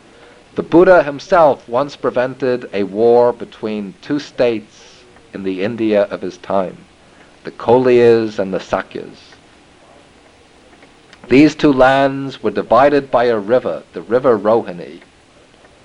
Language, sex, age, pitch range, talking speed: English, male, 50-69, 110-140 Hz, 120 wpm